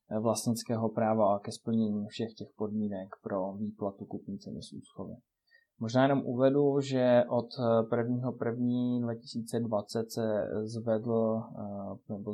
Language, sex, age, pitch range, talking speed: Czech, male, 20-39, 105-115 Hz, 115 wpm